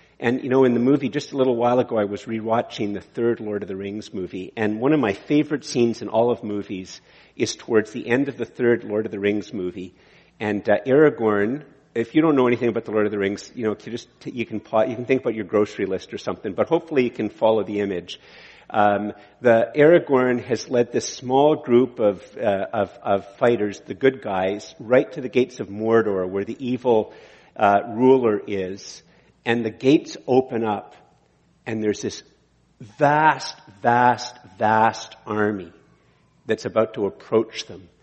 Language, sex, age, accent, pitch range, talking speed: English, male, 50-69, American, 105-130 Hz, 195 wpm